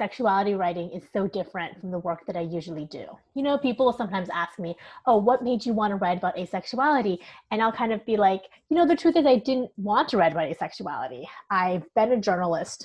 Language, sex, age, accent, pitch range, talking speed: English, female, 30-49, American, 170-220 Hz, 235 wpm